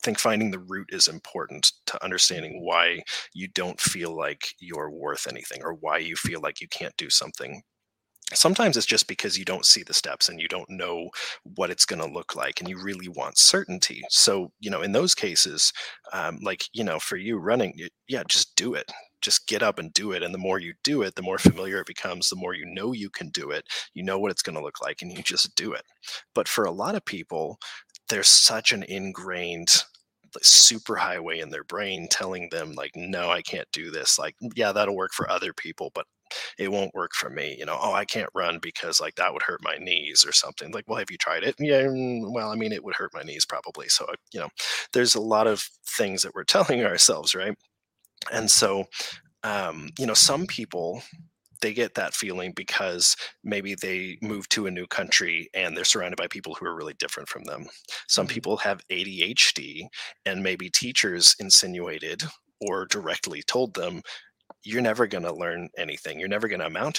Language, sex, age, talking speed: English, male, 30-49, 210 wpm